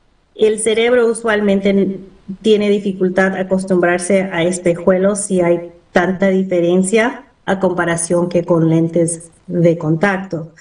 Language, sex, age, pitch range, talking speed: Spanish, female, 30-49, 175-210 Hz, 115 wpm